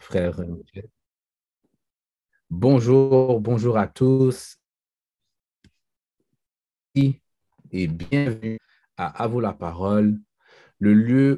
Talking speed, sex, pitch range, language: 70 wpm, male, 100-125 Hz, French